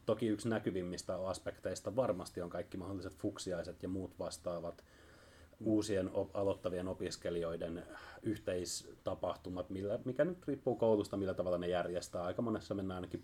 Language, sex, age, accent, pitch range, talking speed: Finnish, male, 30-49, native, 85-105 Hz, 125 wpm